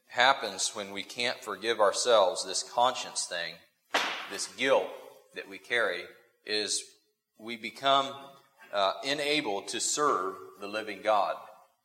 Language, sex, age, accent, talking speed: English, male, 40-59, American, 120 wpm